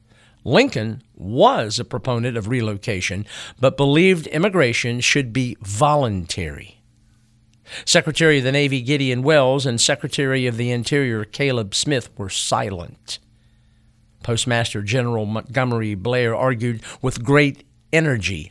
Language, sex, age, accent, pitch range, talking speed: English, male, 50-69, American, 115-145 Hz, 115 wpm